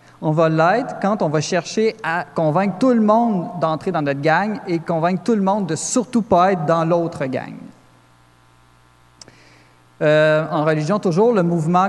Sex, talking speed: male, 170 wpm